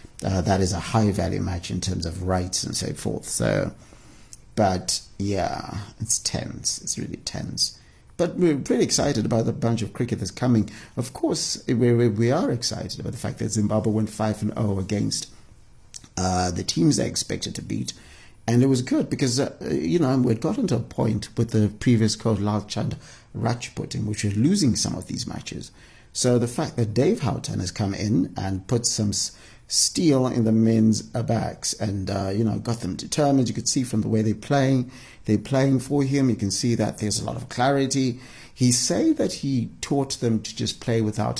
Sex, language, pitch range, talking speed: male, English, 105-130 Hz, 205 wpm